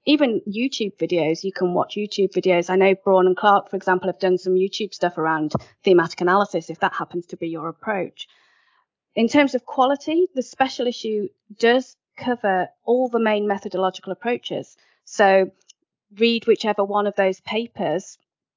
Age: 40-59